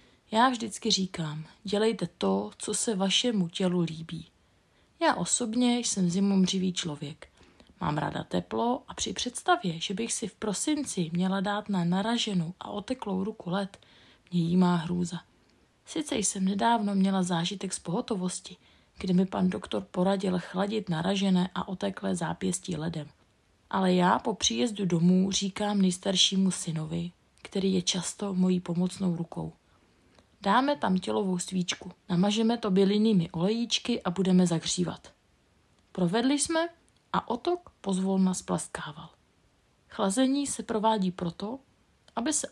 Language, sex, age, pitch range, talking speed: Czech, female, 30-49, 175-215 Hz, 130 wpm